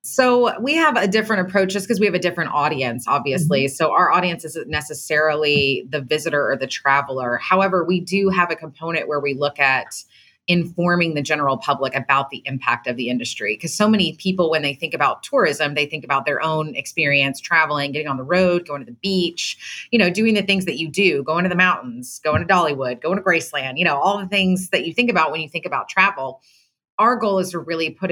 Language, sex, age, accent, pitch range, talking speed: English, female, 30-49, American, 140-175 Hz, 225 wpm